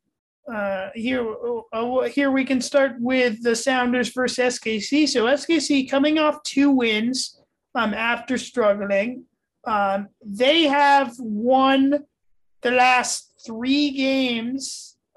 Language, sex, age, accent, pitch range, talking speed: English, male, 30-49, American, 215-265 Hz, 115 wpm